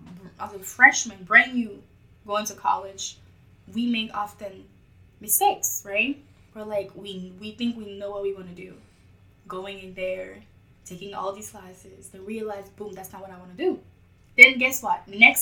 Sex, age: female, 10-29